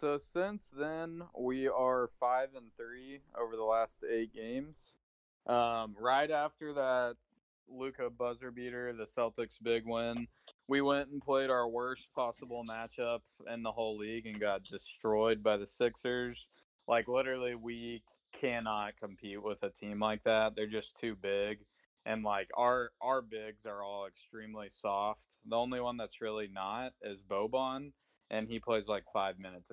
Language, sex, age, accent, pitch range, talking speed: English, male, 20-39, American, 110-140 Hz, 160 wpm